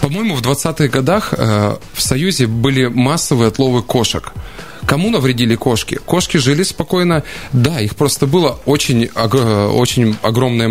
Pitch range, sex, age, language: 110-135 Hz, male, 20-39, Russian